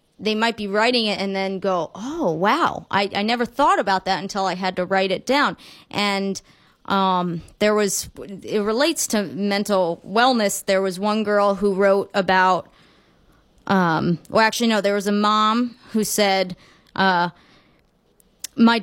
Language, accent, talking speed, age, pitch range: English, American, 160 wpm, 30-49, 190-215 Hz